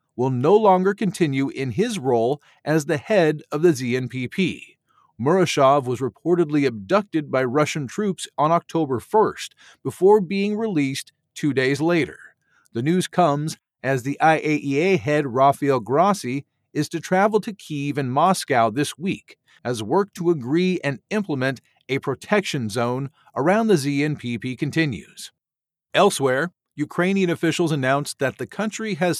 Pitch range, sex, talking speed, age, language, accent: 135-175 Hz, male, 140 wpm, 40-59, English, American